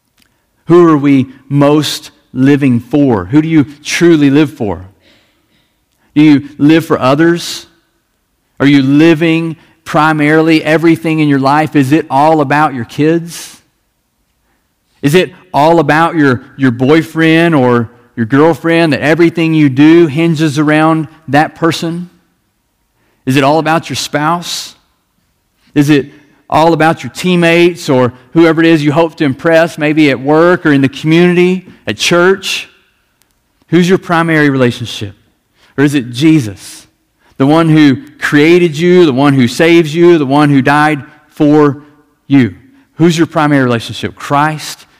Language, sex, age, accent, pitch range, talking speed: English, male, 40-59, American, 135-165 Hz, 145 wpm